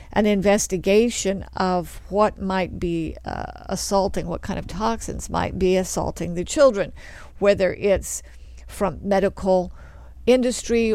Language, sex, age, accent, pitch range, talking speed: English, female, 50-69, American, 160-210 Hz, 120 wpm